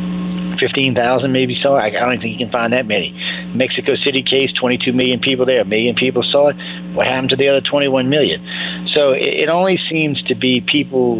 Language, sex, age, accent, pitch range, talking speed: English, male, 40-59, American, 100-135 Hz, 205 wpm